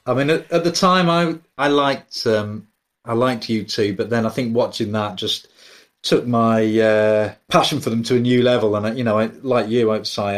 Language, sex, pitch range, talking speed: English, male, 110-160 Hz, 225 wpm